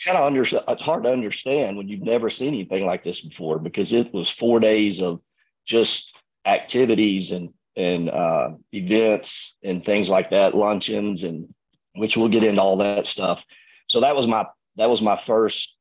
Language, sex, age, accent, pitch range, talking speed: English, male, 40-59, American, 95-105 Hz, 180 wpm